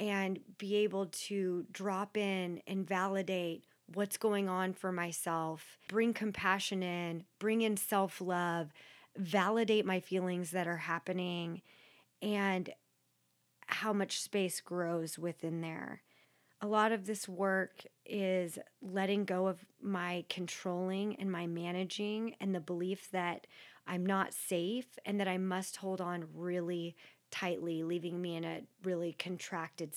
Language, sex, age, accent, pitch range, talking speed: English, female, 30-49, American, 175-210 Hz, 135 wpm